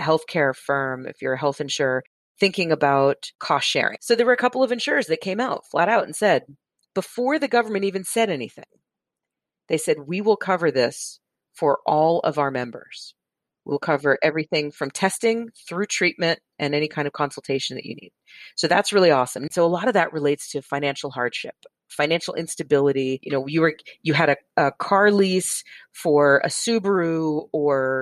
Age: 40-59